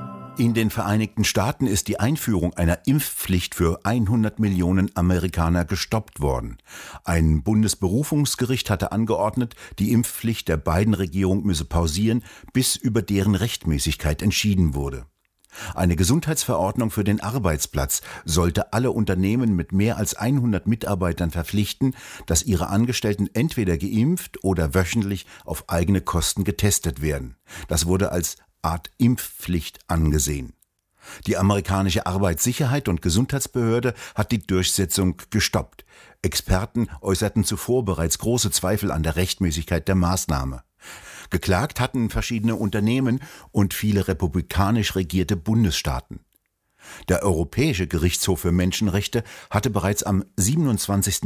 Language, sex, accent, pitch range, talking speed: German, male, German, 90-115 Hz, 120 wpm